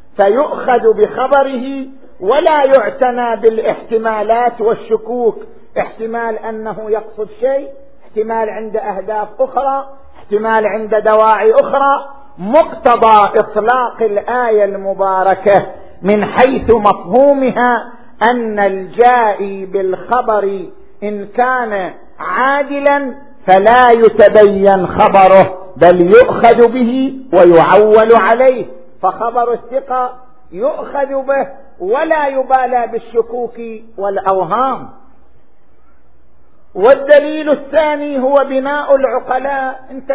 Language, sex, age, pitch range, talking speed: Arabic, male, 50-69, 205-255 Hz, 80 wpm